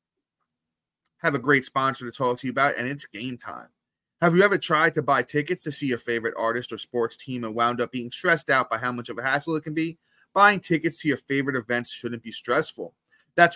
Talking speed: 235 wpm